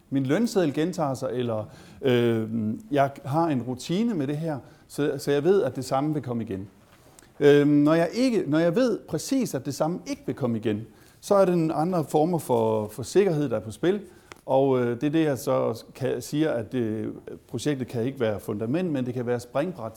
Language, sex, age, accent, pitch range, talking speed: Danish, male, 60-79, native, 115-150 Hz, 215 wpm